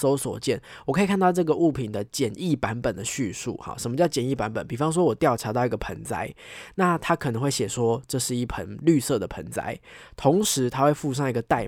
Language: Chinese